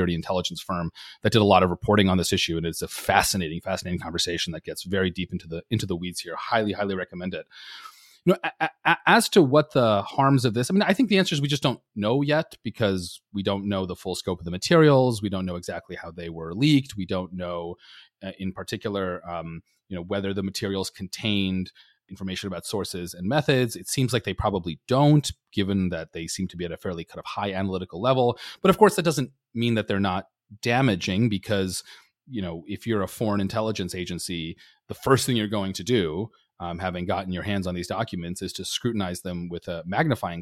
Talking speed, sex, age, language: 225 wpm, male, 30-49, English